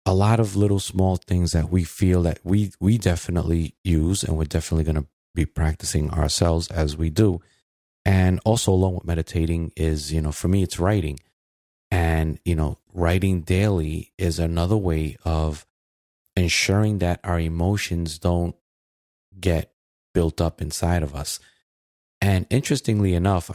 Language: English